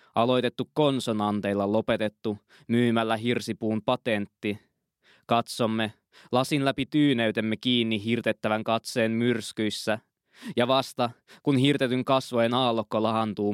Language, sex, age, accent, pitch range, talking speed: Finnish, male, 20-39, native, 110-125 Hz, 95 wpm